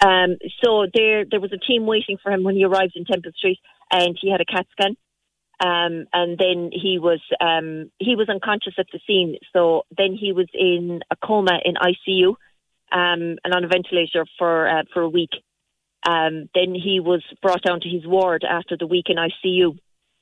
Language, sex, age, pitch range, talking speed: English, female, 30-49, 170-200 Hz, 200 wpm